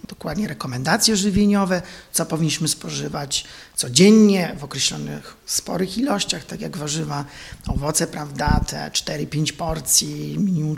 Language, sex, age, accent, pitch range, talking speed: Polish, male, 40-59, native, 160-215 Hz, 110 wpm